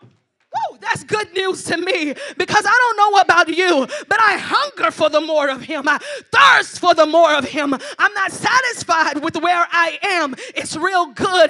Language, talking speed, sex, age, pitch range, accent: English, 195 wpm, female, 30-49, 315-425 Hz, American